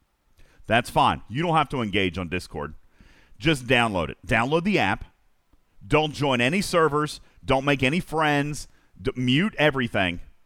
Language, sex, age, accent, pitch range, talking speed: English, male, 40-59, American, 115-150 Hz, 150 wpm